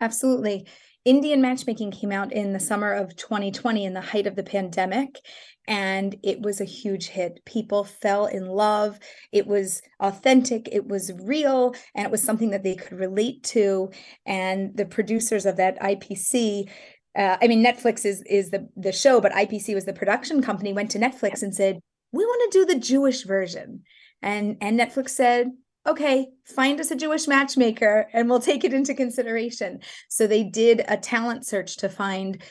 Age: 30-49